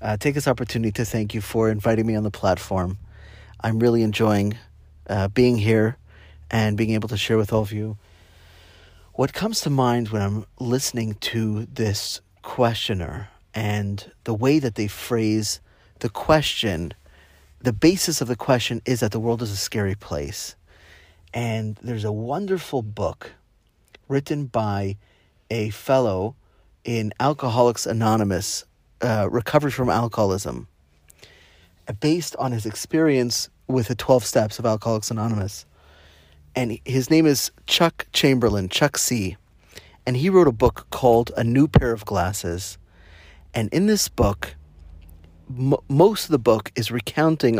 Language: English